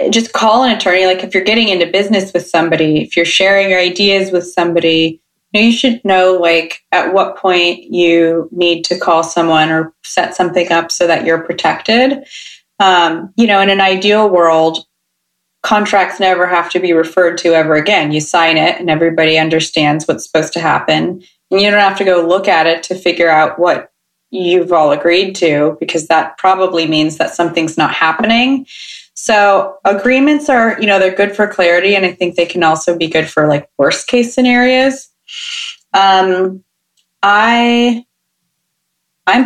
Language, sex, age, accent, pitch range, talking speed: English, female, 30-49, American, 165-210 Hz, 175 wpm